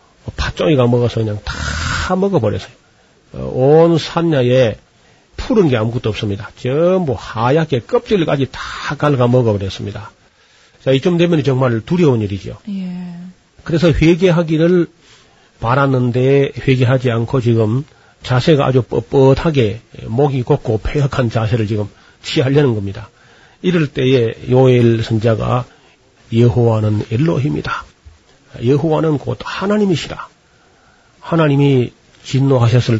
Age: 40-59